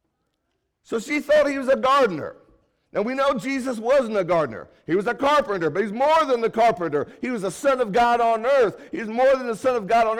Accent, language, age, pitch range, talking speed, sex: American, English, 60-79, 175-255 Hz, 235 wpm, male